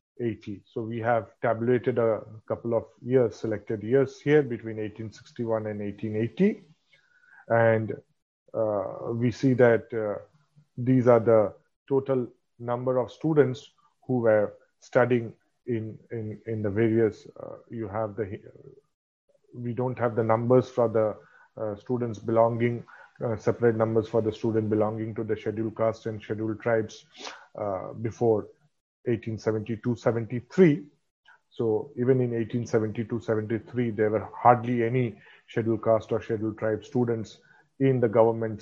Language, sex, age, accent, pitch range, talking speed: English, male, 30-49, Indian, 110-125 Hz, 135 wpm